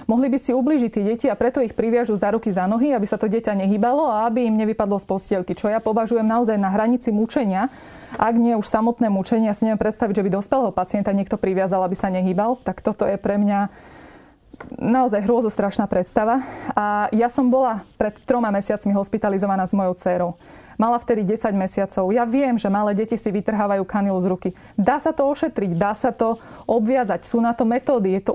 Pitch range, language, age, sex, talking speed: 205-245 Hz, Slovak, 20-39, female, 205 wpm